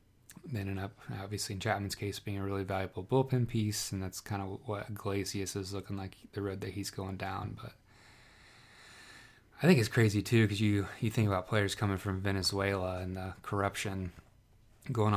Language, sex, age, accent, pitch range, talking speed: English, male, 20-39, American, 95-110 Hz, 185 wpm